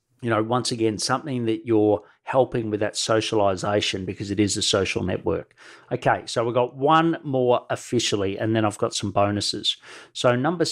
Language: English